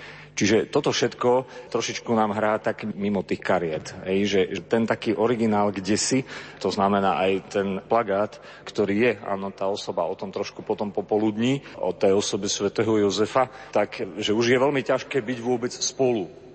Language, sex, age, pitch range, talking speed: Slovak, male, 40-59, 100-130 Hz, 165 wpm